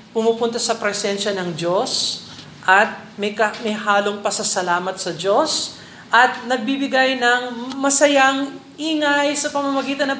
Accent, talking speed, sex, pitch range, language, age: native, 130 wpm, male, 185-225 Hz, Filipino, 40-59